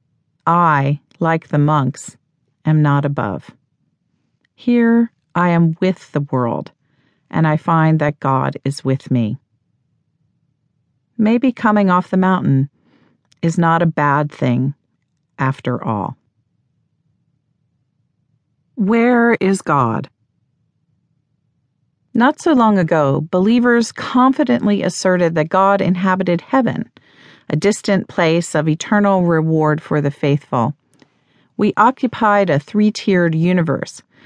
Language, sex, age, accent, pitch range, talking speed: English, female, 40-59, American, 145-190 Hz, 105 wpm